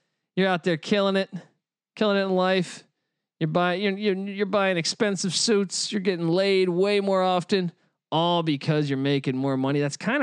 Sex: male